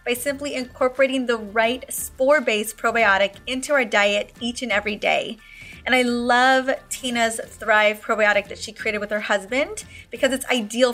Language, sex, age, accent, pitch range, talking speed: English, female, 20-39, American, 220-275 Hz, 160 wpm